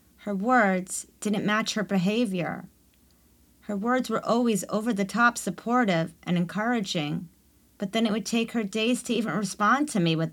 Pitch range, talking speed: 160-215 Hz, 155 wpm